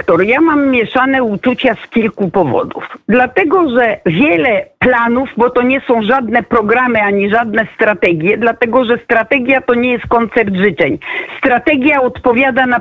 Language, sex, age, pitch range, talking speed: Polish, female, 50-69, 235-285 Hz, 145 wpm